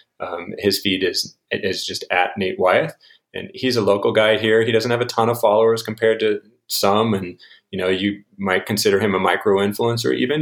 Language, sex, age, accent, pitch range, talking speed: English, male, 30-49, American, 95-120 Hz, 200 wpm